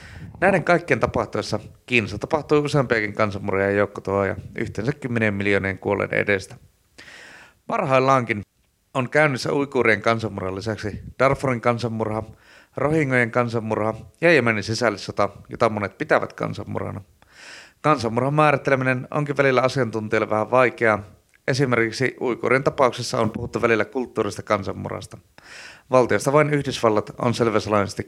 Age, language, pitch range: 30-49, Finnish, 105-130 Hz